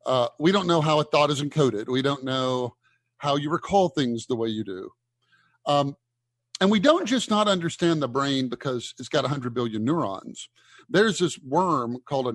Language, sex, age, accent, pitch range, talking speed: English, male, 50-69, American, 120-175 Hz, 195 wpm